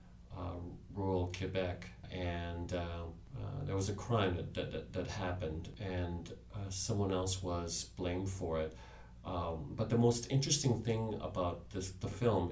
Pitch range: 90-100 Hz